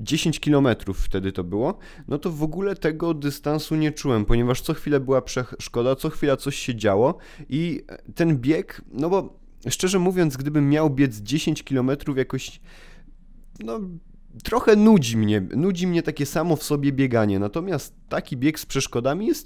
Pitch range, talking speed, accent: 125-155 Hz, 165 wpm, native